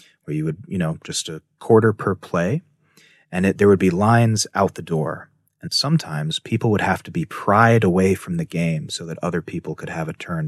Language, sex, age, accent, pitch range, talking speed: English, male, 30-49, American, 90-140 Hz, 220 wpm